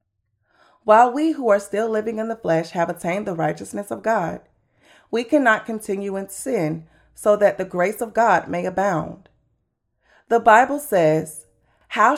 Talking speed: 160 wpm